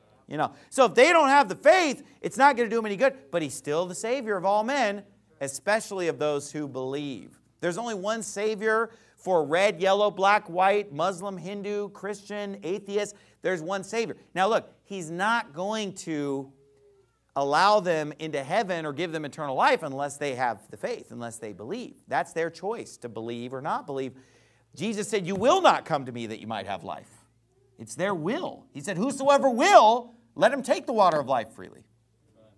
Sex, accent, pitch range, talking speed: male, American, 150-230 Hz, 195 wpm